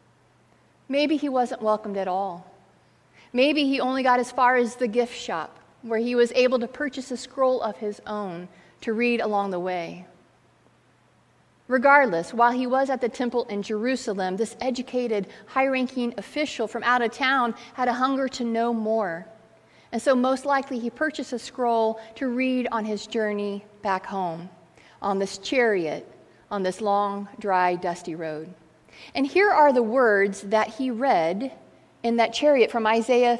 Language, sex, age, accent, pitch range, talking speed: English, female, 40-59, American, 205-255 Hz, 165 wpm